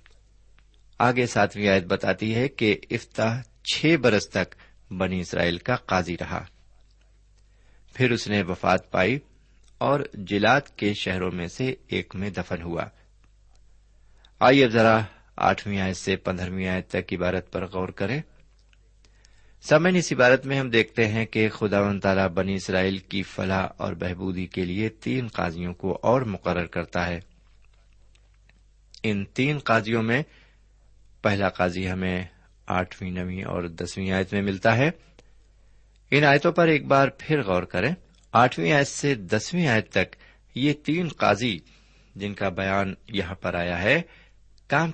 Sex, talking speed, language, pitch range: male, 135 wpm, Urdu, 95-115 Hz